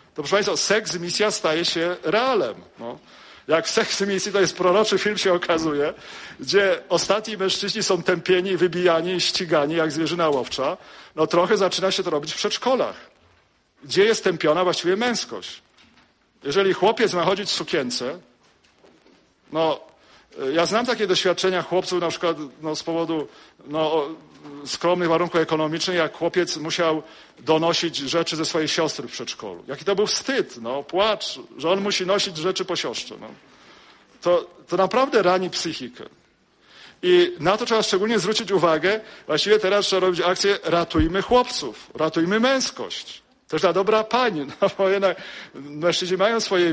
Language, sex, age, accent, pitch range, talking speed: English, male, 50-69, Polish, 165-200 Hz, 155 wpm